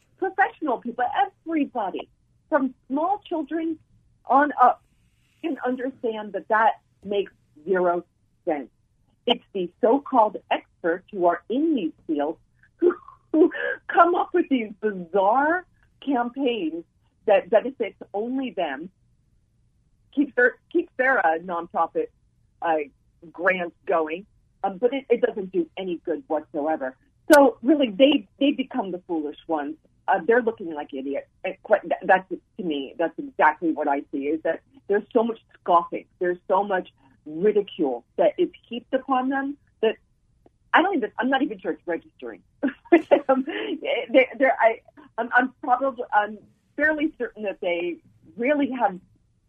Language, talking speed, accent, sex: English, 135 wpm, American, female